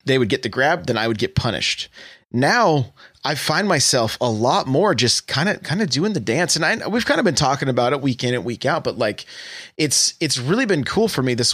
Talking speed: 255 wpm